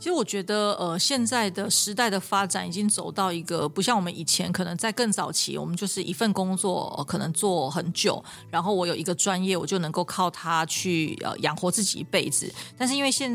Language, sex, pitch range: Chinese, female, 175-210 Hz